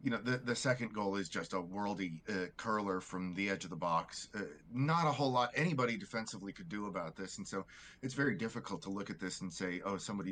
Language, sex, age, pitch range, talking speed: English, male, 30-49, 100-135 Hz, 245 wpm